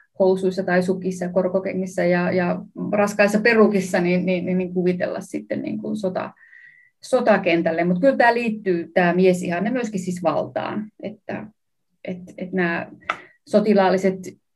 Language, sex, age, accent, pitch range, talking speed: Finnish, female, 30-49, native, 175-205 Hz, 130 wpm